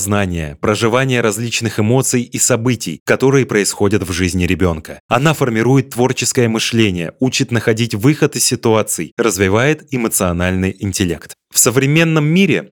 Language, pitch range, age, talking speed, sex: Russian, 100-130 Hz, 20-39, 125 wpm, male